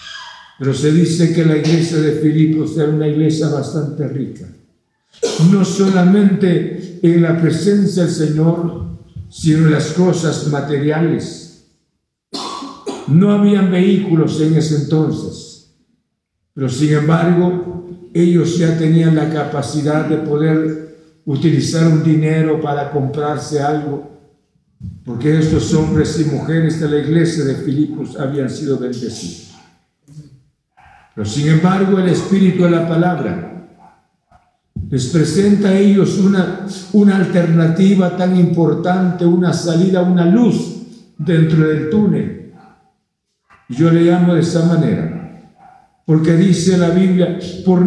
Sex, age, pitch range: male, 60-79, 155-185 Hz